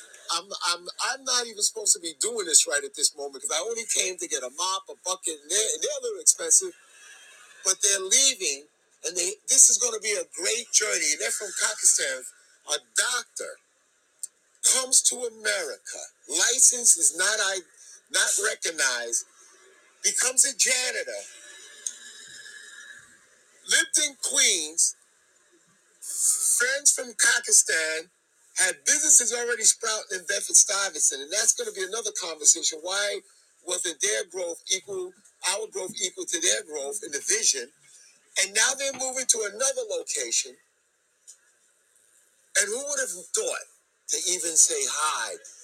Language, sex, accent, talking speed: English, male, American, 145 wpm